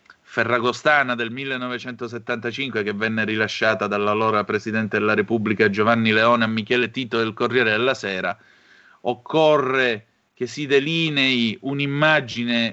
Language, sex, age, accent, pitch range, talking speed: Italian, male, 30-49, native, 105-125 Hz, 115 wpm